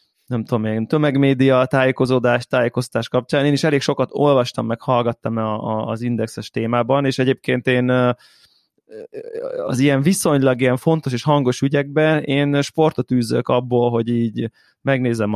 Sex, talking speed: male, 140 wpm